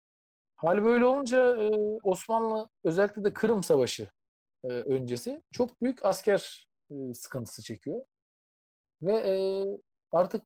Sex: male